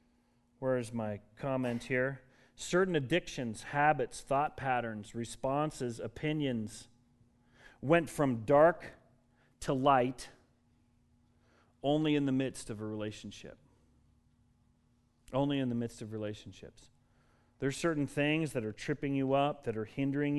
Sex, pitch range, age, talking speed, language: male, 120-145 Hz, 40-59, 120 wpm, English